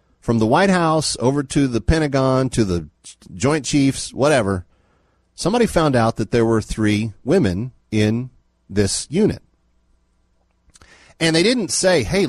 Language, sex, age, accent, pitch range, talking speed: English, male, 40-59, American, 90-140 Hz, 140 wpm